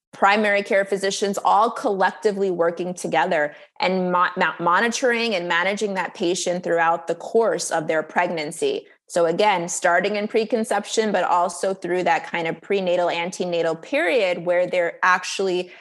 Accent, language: American, English